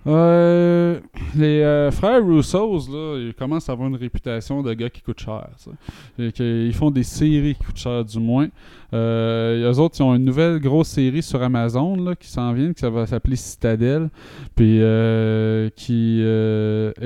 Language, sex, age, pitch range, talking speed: French, male, 20-39, 115-135 Hz, 170 wpm